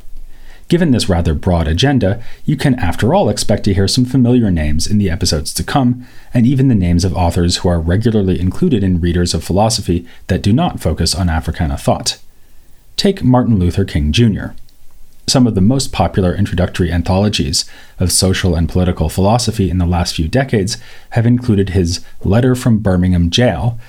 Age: 30-49